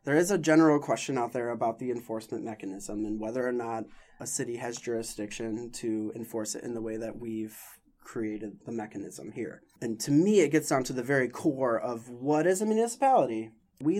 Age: 20-39